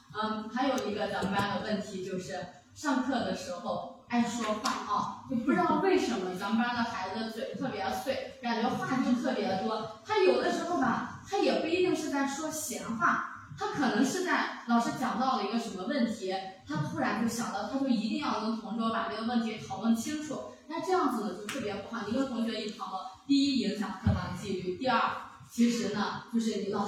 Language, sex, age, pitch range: Chinese, female, 20-39, 195-255 Hz